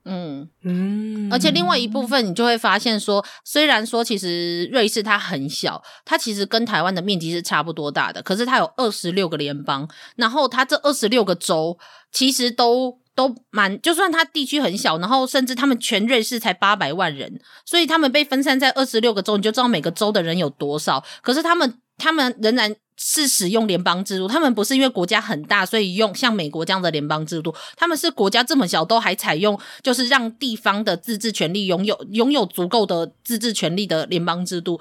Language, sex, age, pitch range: Chinese, female, 30-49, 175-240 Hz